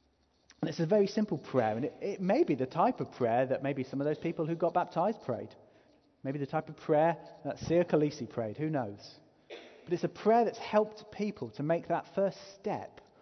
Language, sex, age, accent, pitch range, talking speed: English, male, 30-49, British, 115-165 Hz, 220 wpm